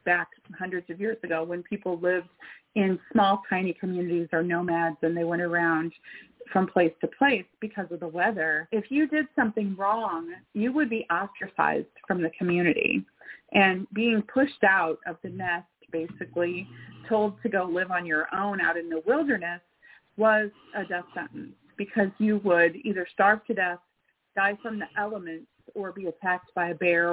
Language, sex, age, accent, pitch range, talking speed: English, female, 30-49, American, 175-220 Hz, 175 wpm